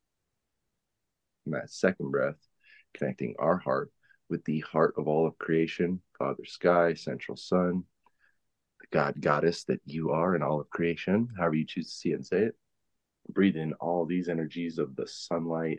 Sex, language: male, English